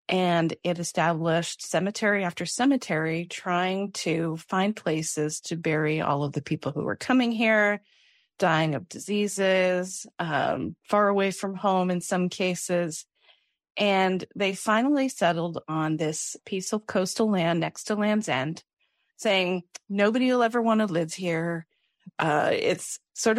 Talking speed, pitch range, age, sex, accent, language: 145 wpm, 165-200 Hz, 30-49, female, American, English